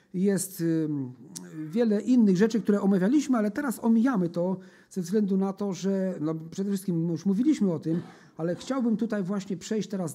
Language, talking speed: Polish, 160 wpm